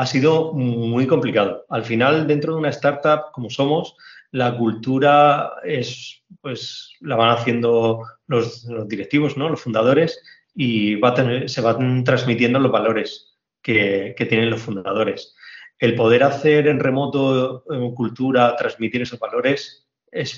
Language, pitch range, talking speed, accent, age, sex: Spanish, 110-130 Hz, 145 wpm, Spanish, 30-49, male